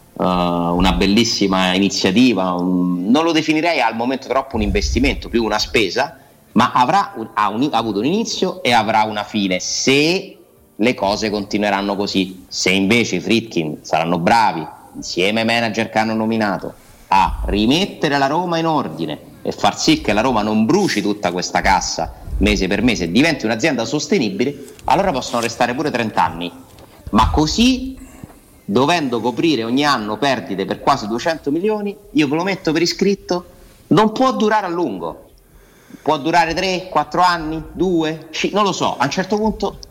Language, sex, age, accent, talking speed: Italian, male, 30-49, native, 160 wpm